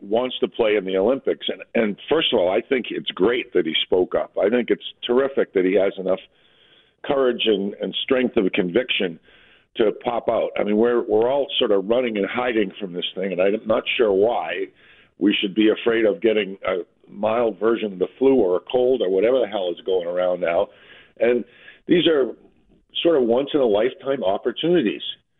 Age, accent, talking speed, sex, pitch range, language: 50-69, American, 210 wpm, male, 105-160 Hz, English